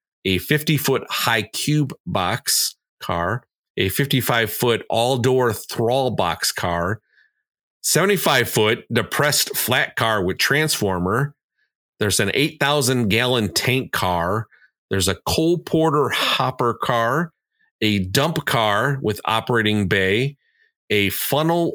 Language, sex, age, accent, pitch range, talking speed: English, male, 40-59, American, 105-145 Hz, 100 wpm